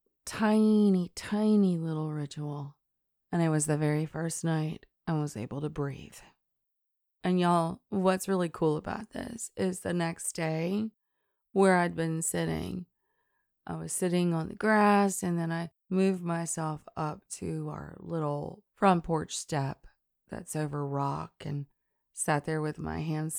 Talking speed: 150 wpm